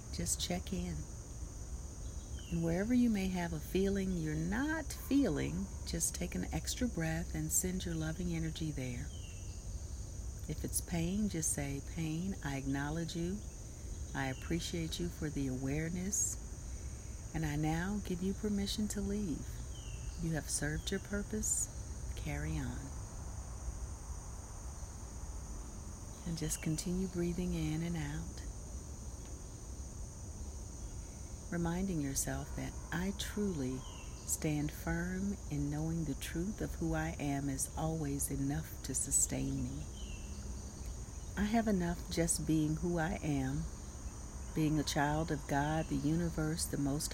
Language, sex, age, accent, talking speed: English, female, 40-59, American, 125 wpm